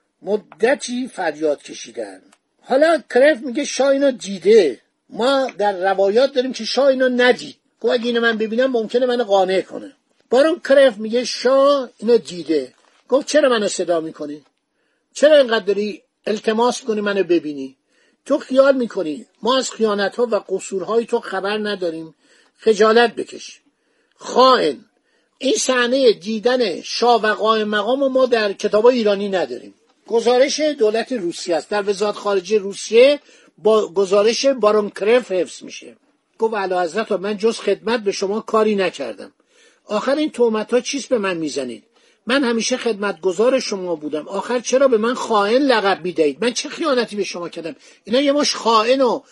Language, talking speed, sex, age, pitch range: Persian, 145 wpm, male, 50-69, 205-260 Hz